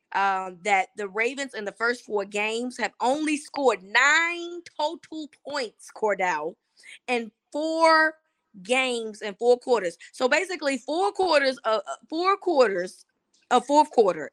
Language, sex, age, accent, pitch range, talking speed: English, female, 20-39, American, 235-315 Hz, 140 wpm